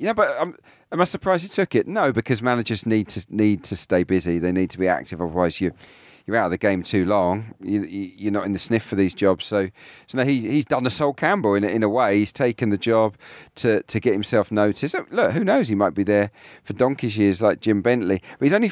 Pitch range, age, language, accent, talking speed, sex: 100-125 Hz, 40-59, English, British, 255 wpm, male